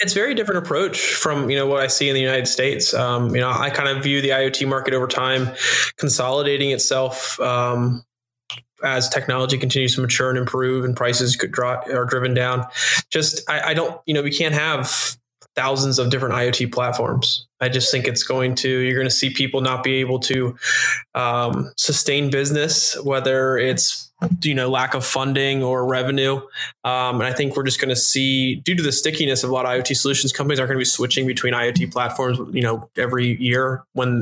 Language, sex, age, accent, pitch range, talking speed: English, male, 20-39, American, 125-135 Hz, 205 wpm